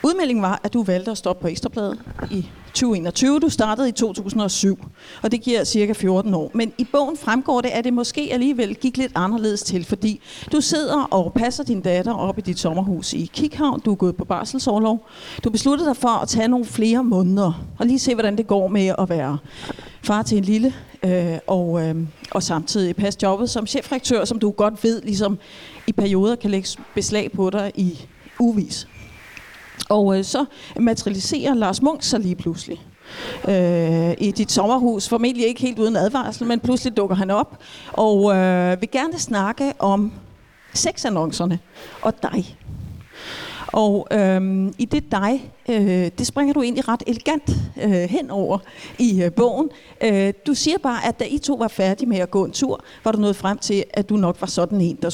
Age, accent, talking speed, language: 40-59, native, 185 wpm, Danish